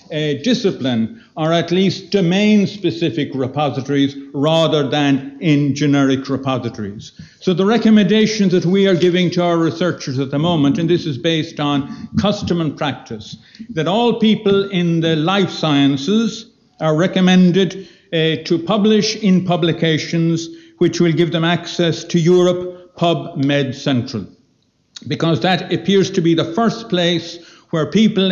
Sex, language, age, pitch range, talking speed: male, English, 60-79, 145-190 Hz, 140 wpm